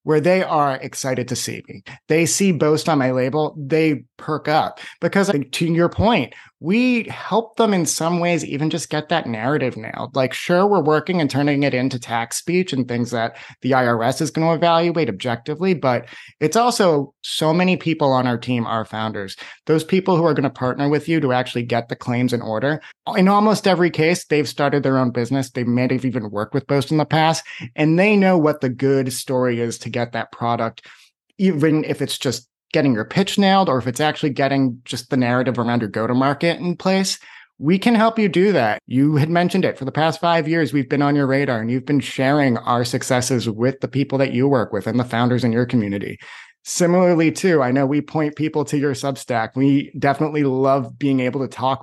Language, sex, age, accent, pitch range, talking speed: English, male, 30-49, American, 125-165 Hz, 220 wpm